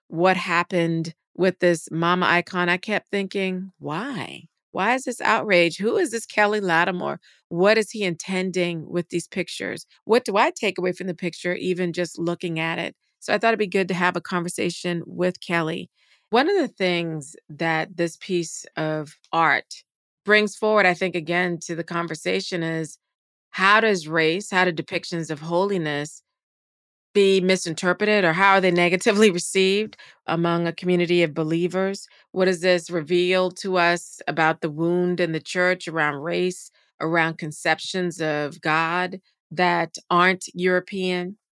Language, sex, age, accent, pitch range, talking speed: English, female, 40-59, American, 170-195 Hz, 160 wpm